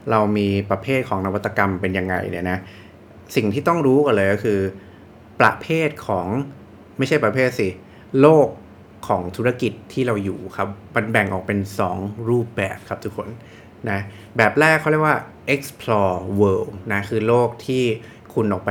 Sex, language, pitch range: male, English, 100-130 Hz